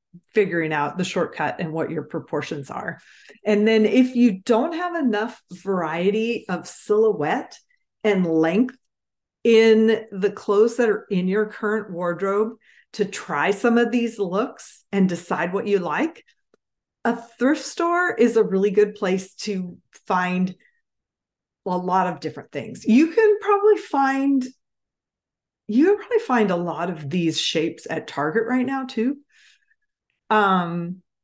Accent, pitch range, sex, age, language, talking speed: American, 175-235 Hz, female, 40-59, English, 145 wpm